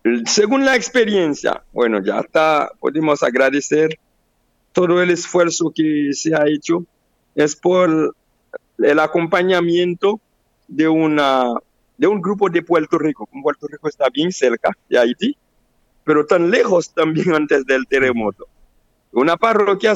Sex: male